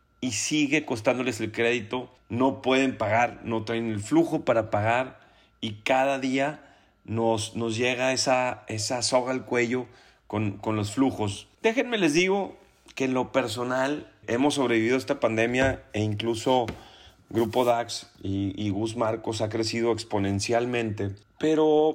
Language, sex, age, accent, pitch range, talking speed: Spanish, male, 30-49, Mexican, 110-150 Hz, 140 wpm